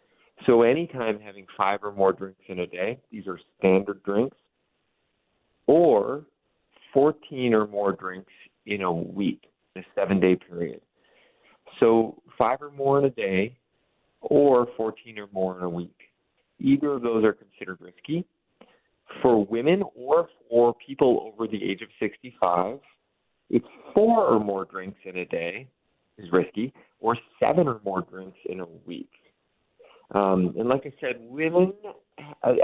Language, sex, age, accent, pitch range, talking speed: English, male, 30-49, American, 100-130 Hz, 145 wpm